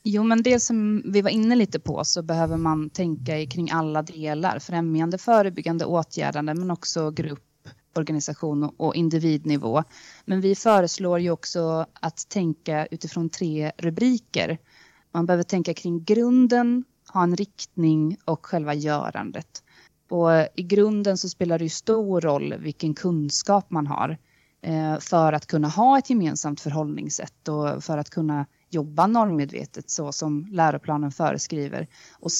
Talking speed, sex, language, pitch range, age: 145 wpm, female, Swedish, 155-190 Hz, 30-49